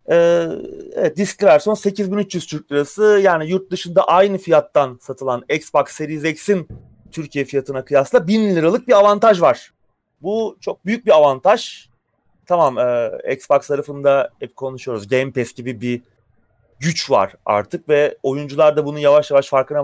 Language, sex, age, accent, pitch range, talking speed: Turkish, male, 30-49, native, 135-205 Hz, 150 wpm